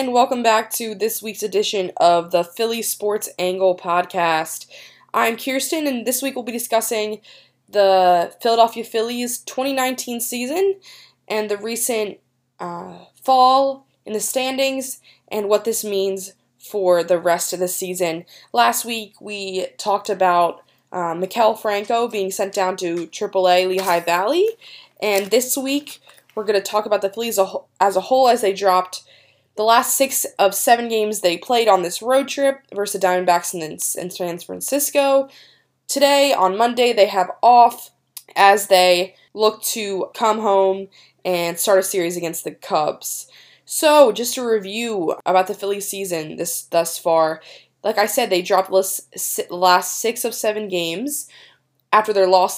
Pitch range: 185-245 Hz